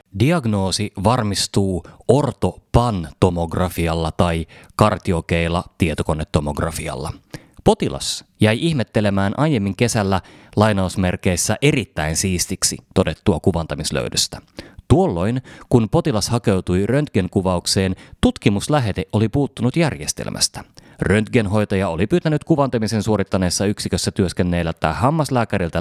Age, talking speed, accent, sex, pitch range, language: 30-49, 75 wpm, native, male, 90-125 Hz, Finnish